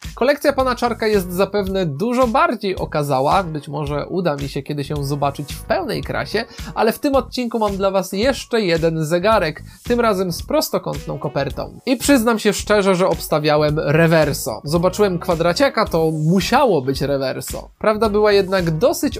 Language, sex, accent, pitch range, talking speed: Polish, male, native, 170-225 Hz, 160 wpm